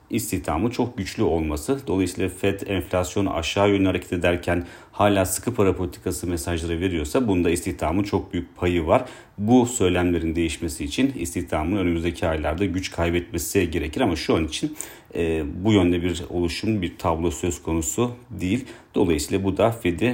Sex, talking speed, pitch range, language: male, 150 wpm, 85-100 Hz, Turkish